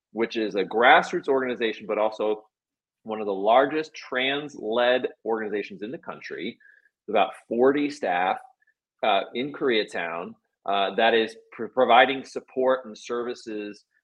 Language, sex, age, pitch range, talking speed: English, male, 30-49, 110-135 Hz, 135 wpm